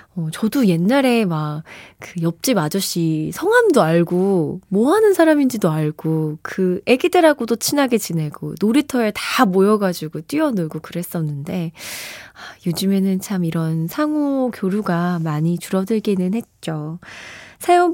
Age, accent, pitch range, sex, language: 20-39, native, 170-250 Hz, female, Korean